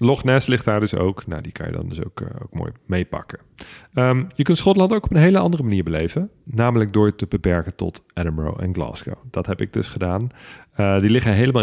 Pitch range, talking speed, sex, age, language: 95-125 Hz, 230 wpm, male, 40-59, Dutch